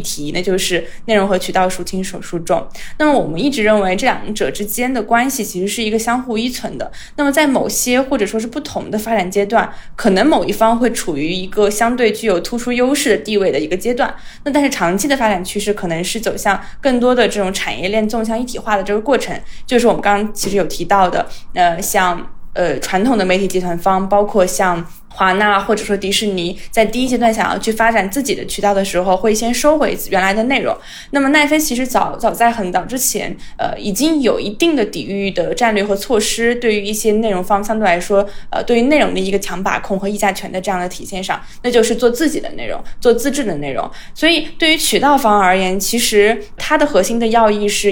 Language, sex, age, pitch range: Chinese, female, 20-39, 195-240 Hz